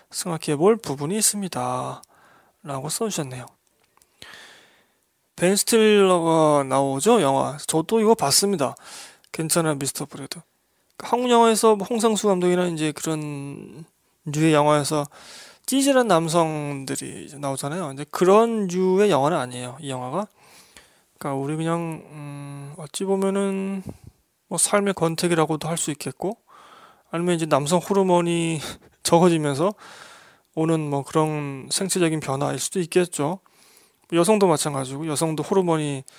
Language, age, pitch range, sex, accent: Korean, 20-39, 145-195 Hz, male, native